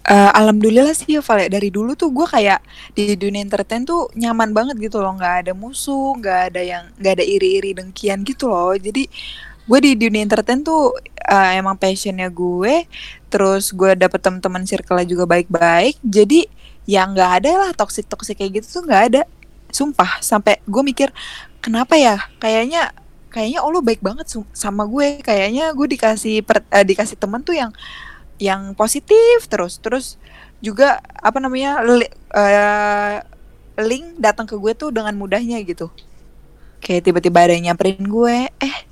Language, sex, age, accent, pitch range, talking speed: Indonesian, female, 20-39, native, 200-265 Hz, 165 wpm